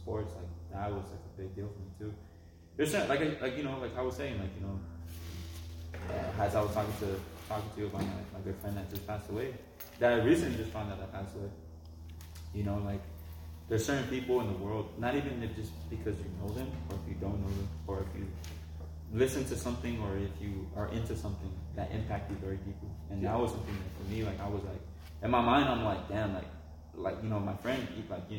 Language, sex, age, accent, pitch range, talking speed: English, male, 20-39, American, 95-110 Hz, 250 wpm